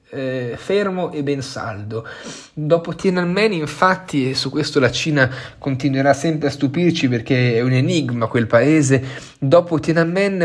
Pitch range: 130-155 Hz